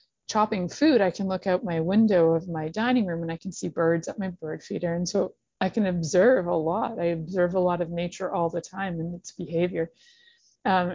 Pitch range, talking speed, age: 165-195 Hz, 225 wpm, 30-49